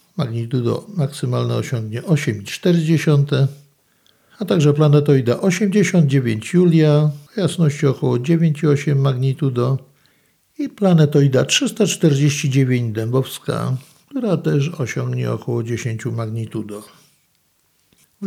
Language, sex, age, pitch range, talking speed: Polish, male, 60-79, 125-165 Hz, 80 wpm